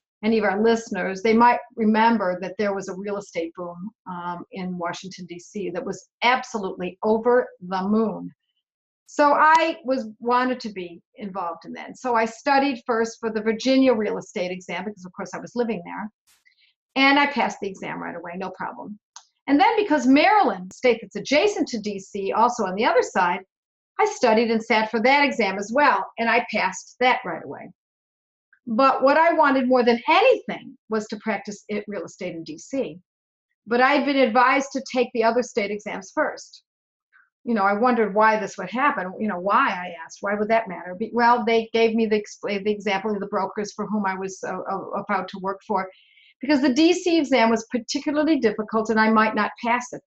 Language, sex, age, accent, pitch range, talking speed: English, female, 50-69, American, 200-255 Hz, 195 wpm